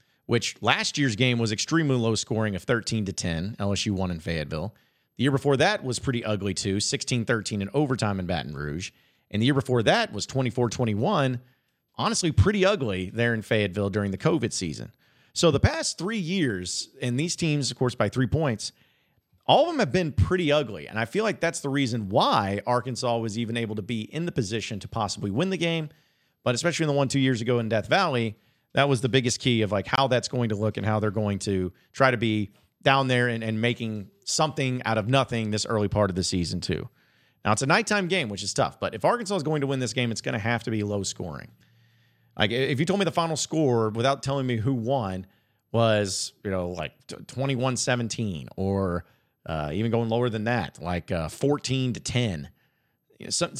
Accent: American